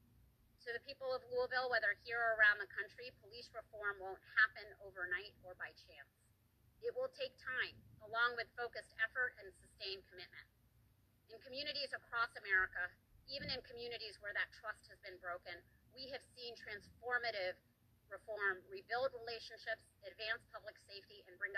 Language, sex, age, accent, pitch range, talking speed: English, female, 30-49, American, 185-240 Hz, 155 wpm